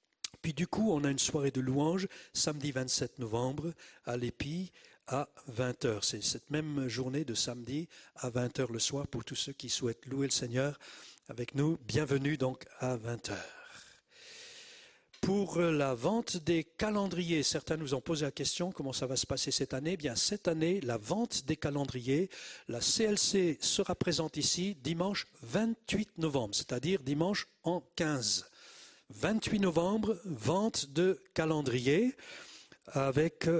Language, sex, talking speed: French, male, 150 wpm